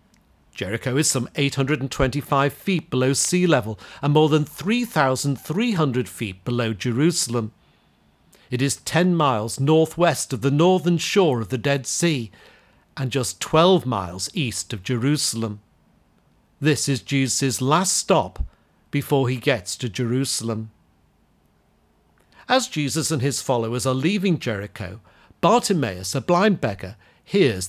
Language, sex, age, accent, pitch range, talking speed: English, male, 50-69, British, 115-155 Hz, 125 wpm